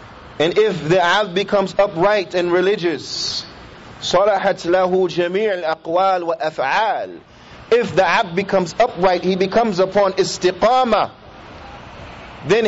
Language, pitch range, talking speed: English, 185-245 Hz, 105 wpm